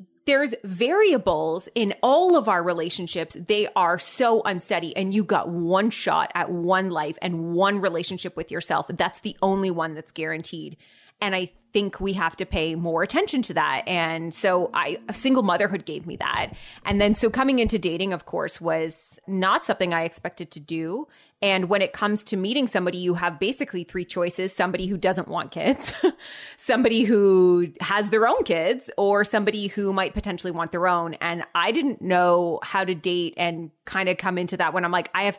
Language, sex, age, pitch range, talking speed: English, female, 20-39, 170-205 Hz, 190 wpm